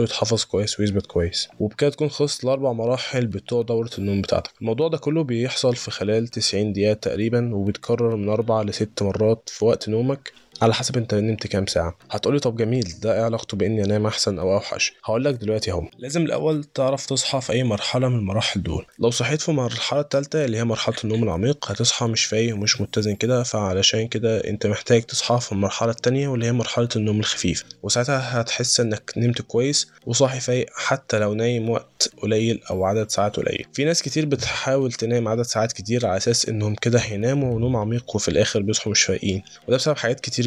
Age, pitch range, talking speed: 20-39, 105-125 Hz, 185 wpm